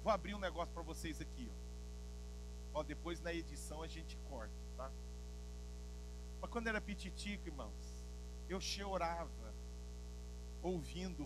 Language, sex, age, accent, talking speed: Portuguese, male, 50-69, Brazilian, 130 wpm